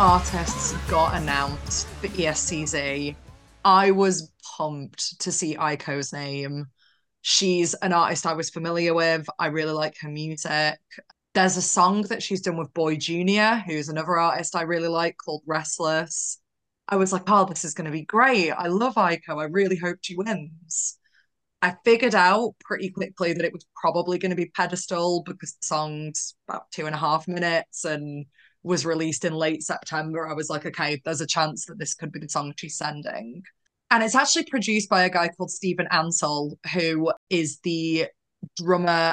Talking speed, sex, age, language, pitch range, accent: 180 wpm, female, 20-39, English, 160-190 Hz, British